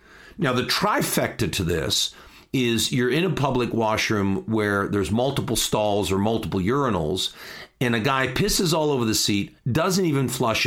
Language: English